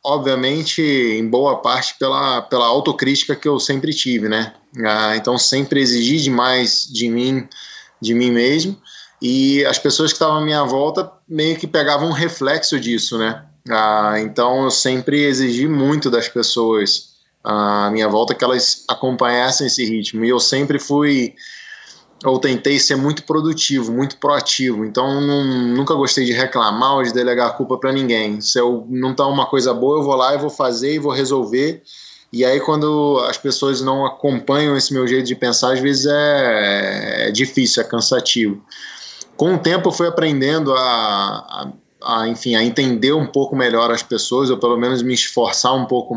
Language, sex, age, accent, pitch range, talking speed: Portuguese, male, 20-39, Brazilian, 120-145 Hz, 175 wpm